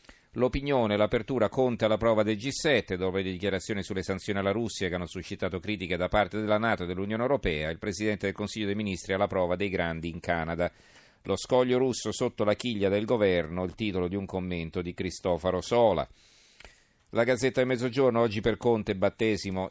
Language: Italian